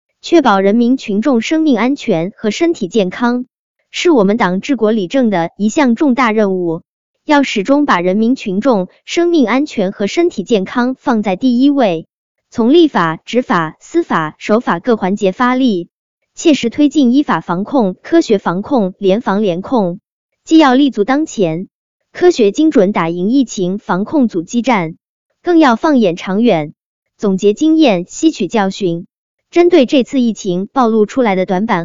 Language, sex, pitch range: Chinese, male, 190-270 Hz